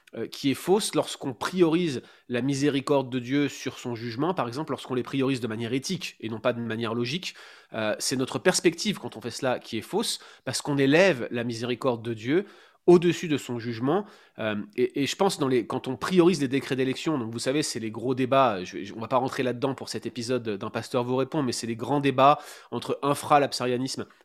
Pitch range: 125-165 Hz